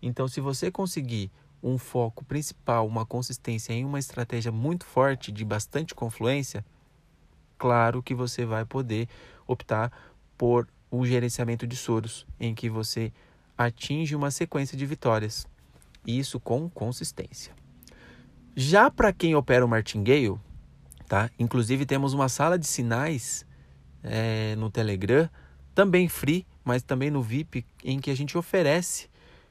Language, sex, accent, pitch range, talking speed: Portuguese, male, Brazilian, 110-150 Hz, 135 wpm